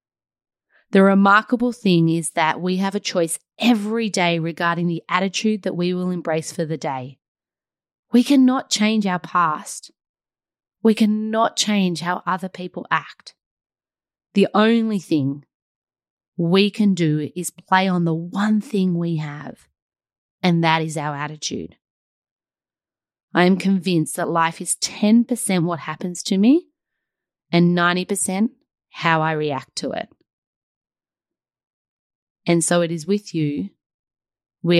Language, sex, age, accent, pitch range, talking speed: English, female, 30-49, Australian, 170-225 Hz, 135 wpm